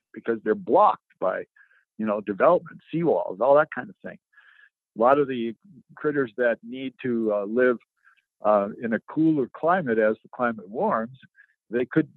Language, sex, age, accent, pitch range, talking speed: English, male, 60-79, American, 115-145 Hz, 170 wpm